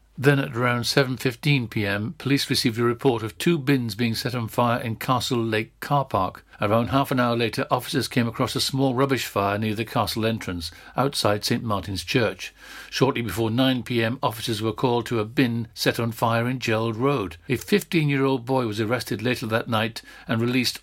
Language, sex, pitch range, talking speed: English, male, 110-135 Hz, 185 wpm